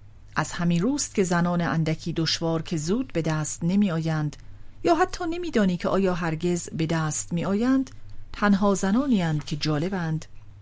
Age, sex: 40-59, female